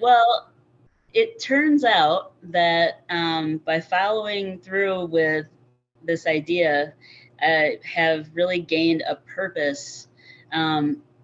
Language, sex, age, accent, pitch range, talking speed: English, female, 30-49, American, 150-170 Hz, 100 wpm